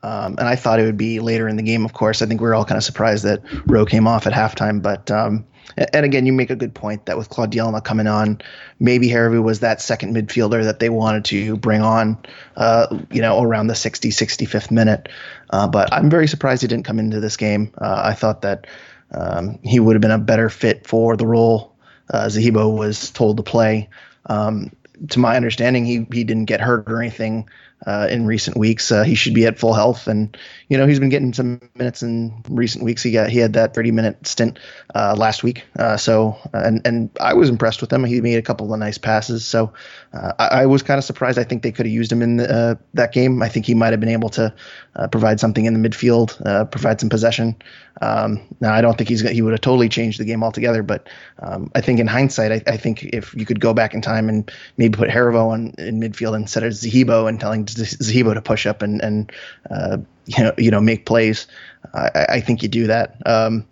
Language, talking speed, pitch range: English, 240 wpm, 110-120 Hz